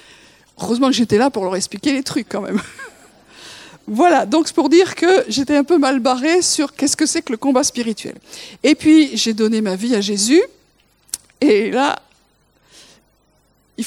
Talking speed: 175 wpm